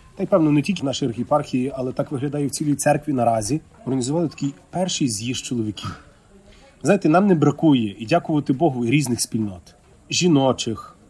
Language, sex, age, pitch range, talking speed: Ukrainian, male, 30-49, 115-155 Hz, 175 wpm